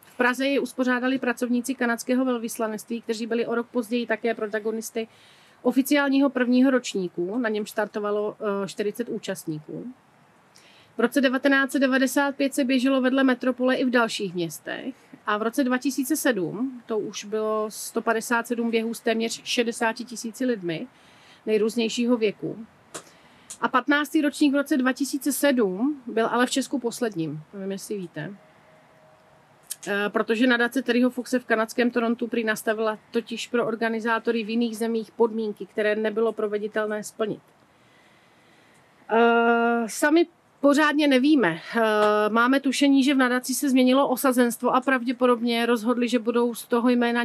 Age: 40-59